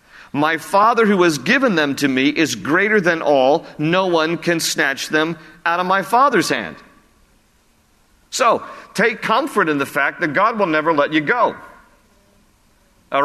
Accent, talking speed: American, 165 wpm